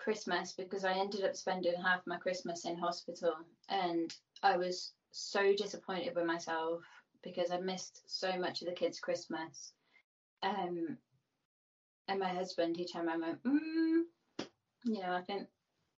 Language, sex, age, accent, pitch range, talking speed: English, female, 20-39, British, 175-225 Hz, 145 wpm